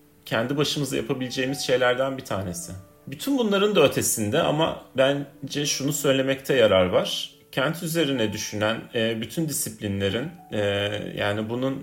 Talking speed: 115 wpm